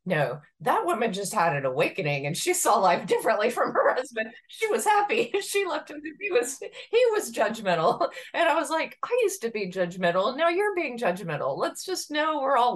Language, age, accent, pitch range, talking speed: English, 30-49, American, 150-220 Hz, 205 wpm